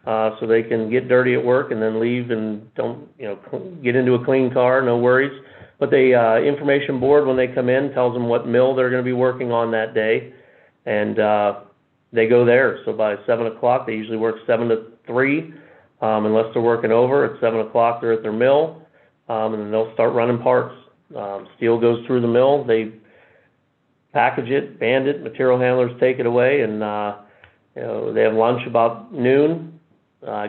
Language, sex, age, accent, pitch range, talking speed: English, male, 50-69, American, 110-125 Hz, 205 wpm